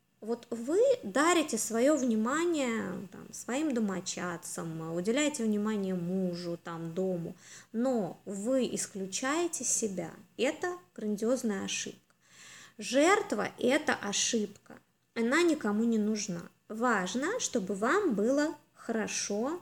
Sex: female